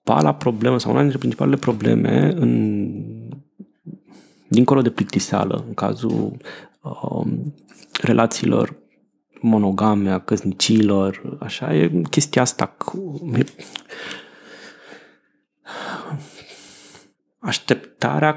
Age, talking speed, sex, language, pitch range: 30-49, 80 wpm, male, Romanian, 100-115 Hz